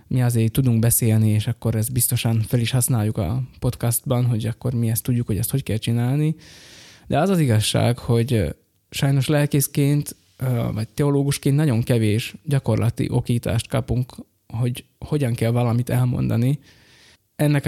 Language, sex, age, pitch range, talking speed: Hungarian, male, 20-39, 115-140 Hz, 145 wpm